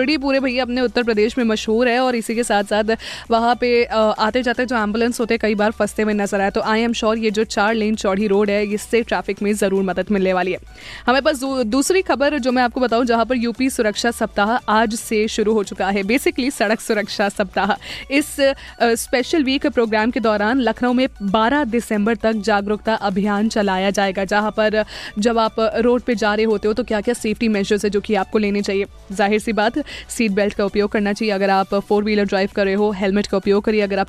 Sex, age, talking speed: female, 20-39, 225 wpm